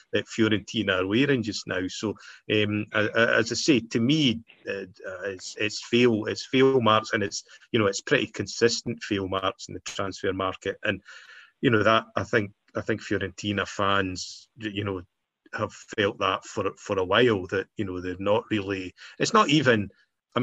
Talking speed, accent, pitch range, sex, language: 180 wpm, British, 95-110 Hz, male, English